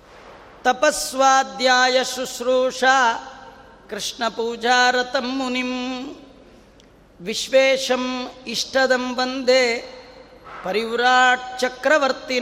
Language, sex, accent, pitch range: Kannada, female, native, 250-275 Hz